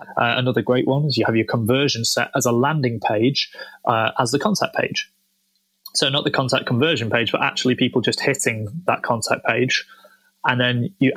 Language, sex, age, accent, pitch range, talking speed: English, male, 20-39, British, 120-135 Hz, 195 wpm